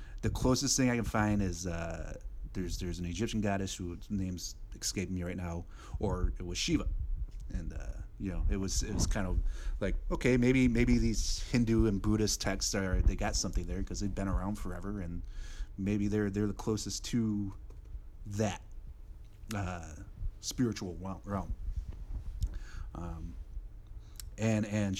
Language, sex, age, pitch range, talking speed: English, male, 30-49, 85-105 Hz, 160 wpm